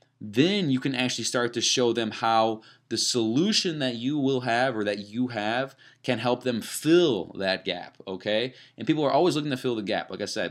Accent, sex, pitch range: American, male, 110-140 Hz